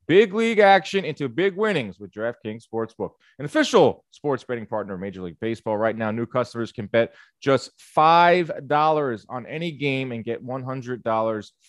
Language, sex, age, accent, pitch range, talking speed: English, male, 30-49, American, 115-160 Hz, 165 wpm